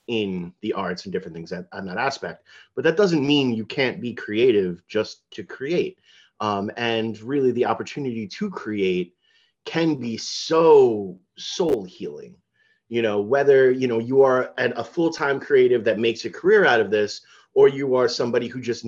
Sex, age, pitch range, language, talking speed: male, 30-49, 110-140 Hz, English, 180 wpm